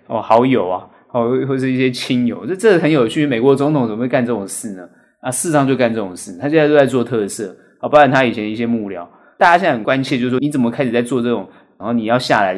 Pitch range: 120-150 Hz